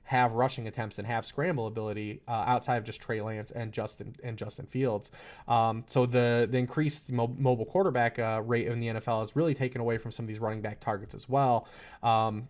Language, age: English, 20-39